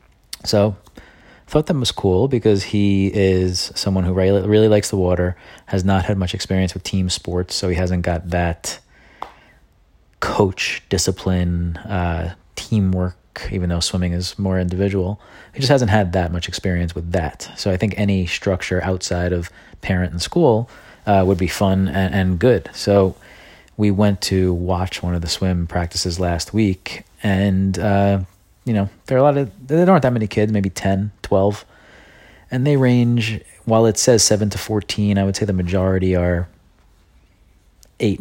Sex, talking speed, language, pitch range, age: male, 170 wpm, English, 90-105 Hz, 30-49